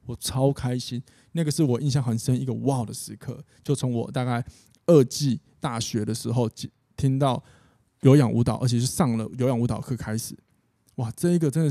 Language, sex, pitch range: Chinese, male, 115-135 Hz